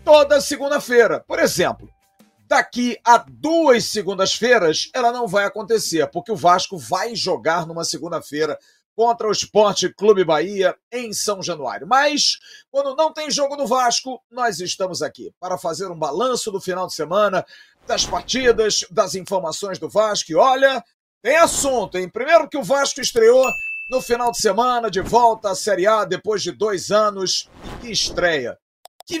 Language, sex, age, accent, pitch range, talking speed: Portuguese, male, 50-69, Brazilian, 185-250 Hz, 160 wpm